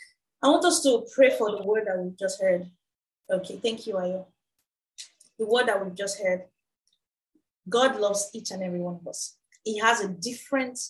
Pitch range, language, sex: 195-250 Hz, English, female